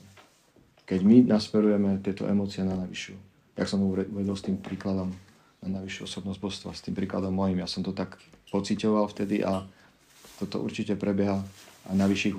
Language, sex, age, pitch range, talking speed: Czech, male, 40-59, 95-105 Hz, 160 wpm